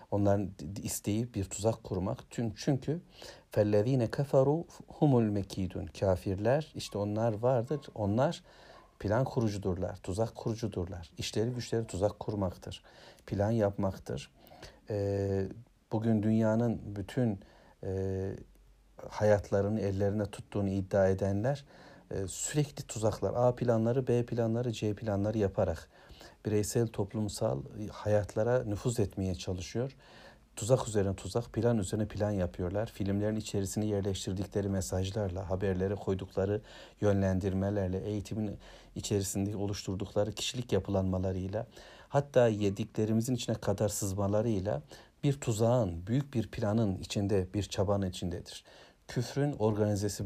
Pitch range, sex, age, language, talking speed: 95-115 Hz, male, 60-79, Turkish, 100 wpm